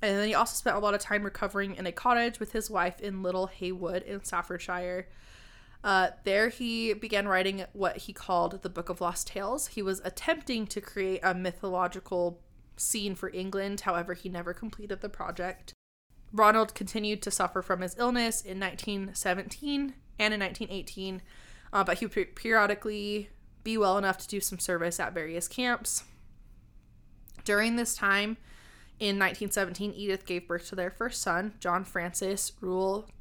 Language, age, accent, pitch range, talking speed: English, 20-39, American, 180-215 Hz, 165 wpm